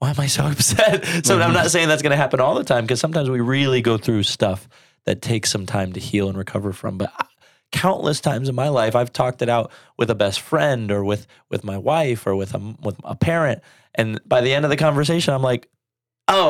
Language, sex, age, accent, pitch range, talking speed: English, male, 20-39, American, 110-145 Hz, 245 wpm